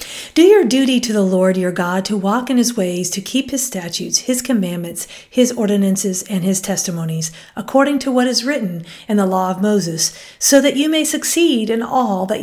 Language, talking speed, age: English, 205 wpm, 50-69